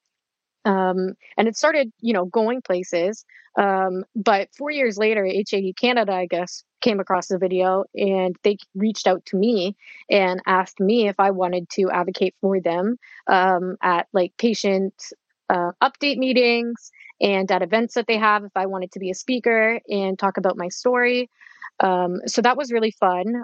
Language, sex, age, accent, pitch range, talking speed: English, female, 20-39, American, 185-220 Hz, 175 wpm